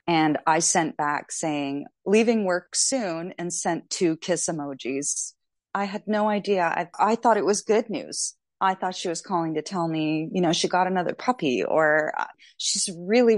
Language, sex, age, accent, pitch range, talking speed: English, female, 30-49, American, 150-180 Hz, 190 wpm